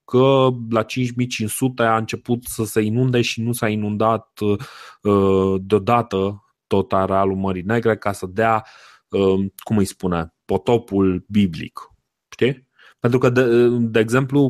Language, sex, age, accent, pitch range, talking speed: Romanian, male, 20-39, native, 100-125 Hz, 125 wpm